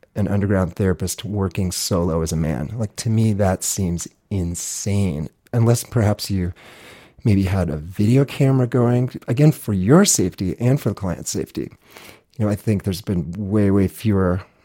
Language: English